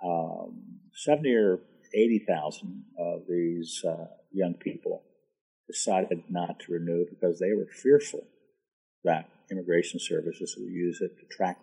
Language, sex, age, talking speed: English, male, 50-69, 135 wpm